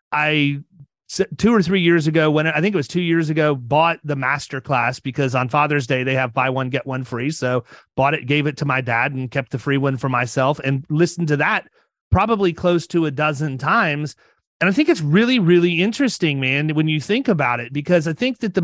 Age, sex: 30-49, male